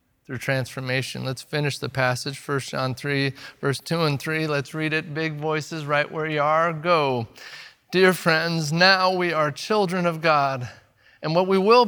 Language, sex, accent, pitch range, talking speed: English, male, American, 155-210 Hz, 170 wpm